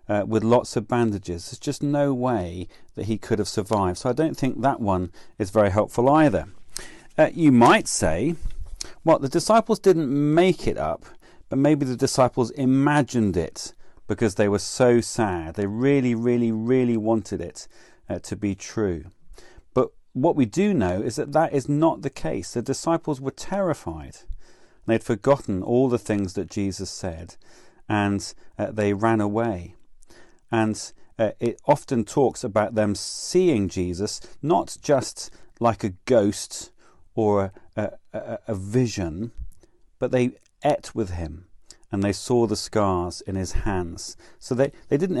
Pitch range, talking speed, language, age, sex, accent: 100-125 Hz, 160 wpm, English, 40-59, male, British